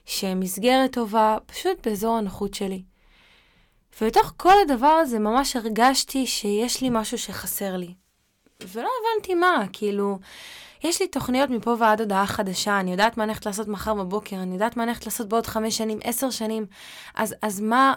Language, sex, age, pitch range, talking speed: Hebrew, female, 20-39, 195-245 Hz, 165 wpm